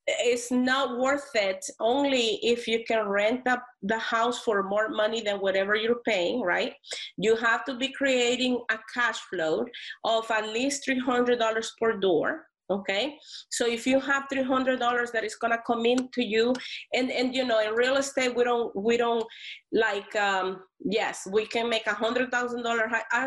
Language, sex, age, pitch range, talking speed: English, female, 30-49, 215-250 Hz, 175 wpm